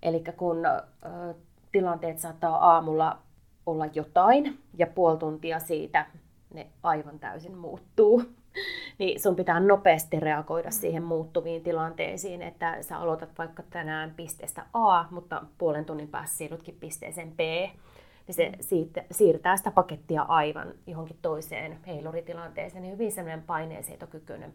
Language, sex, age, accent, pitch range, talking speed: Finnish, female, 20-39, native, 160-185 Hz, 120 wpm